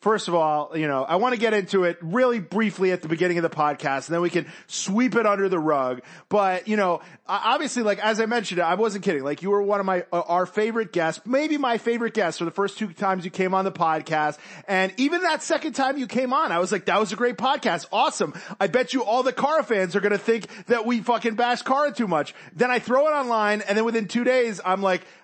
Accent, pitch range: American, 175-230 Hz